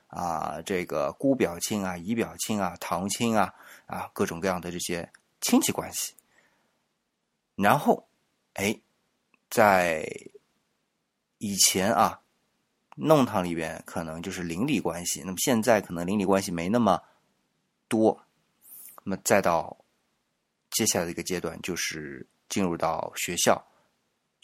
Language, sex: Chinese, male